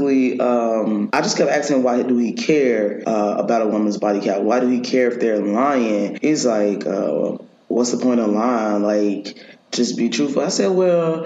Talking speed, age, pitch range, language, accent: 195 wpm, 20-39, 110-150 Hz, English, American